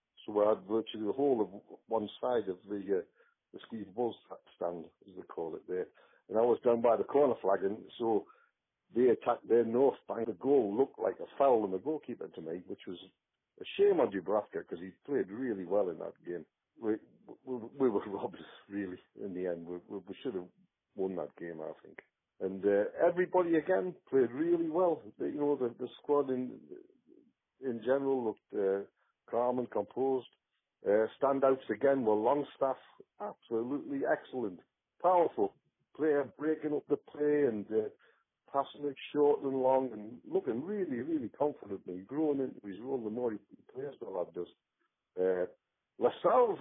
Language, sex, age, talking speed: English, male, 50-69, 180 wpm